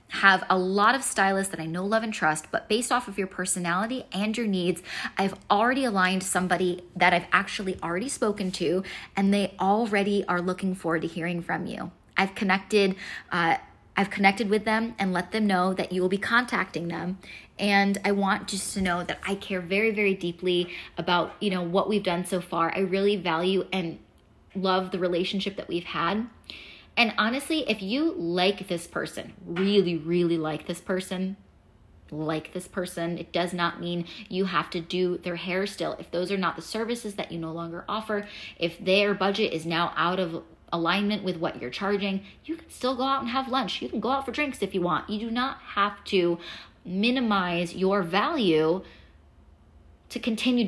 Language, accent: English, American